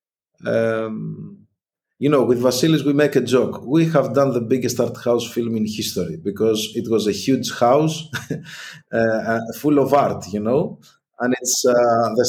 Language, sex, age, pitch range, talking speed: English, male, 50-69, 100-130 Hz, 165 wpm